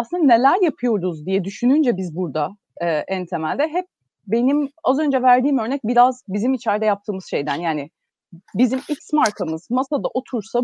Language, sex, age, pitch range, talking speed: Turkish, female, 30-49, 195-265 Hz, 145 wpm